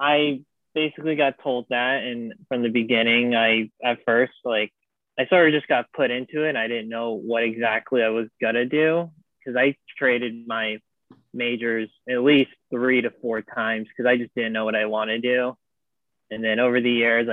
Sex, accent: male, American